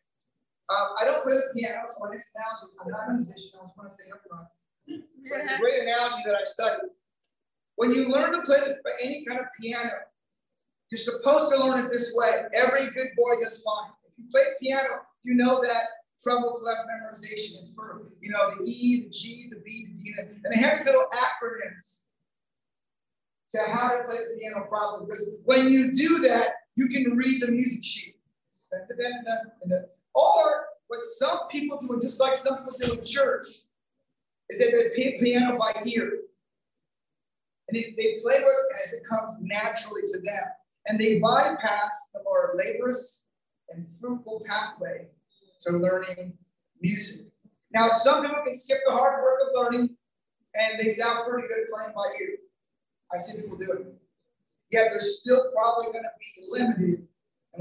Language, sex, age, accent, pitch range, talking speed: English, male, 30-49, American, 215-270 Hz, 175 wpm